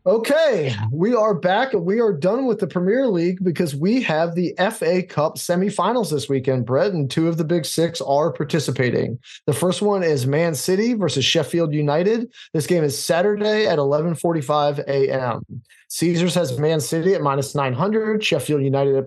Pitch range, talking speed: 145-185 Hz, 175 wpm